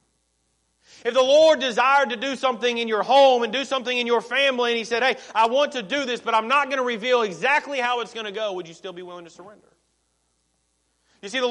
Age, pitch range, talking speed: 30-49, 220-260 Hz, 245 wpm